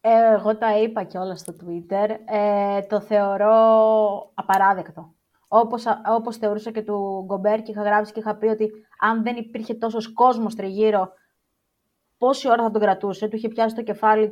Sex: female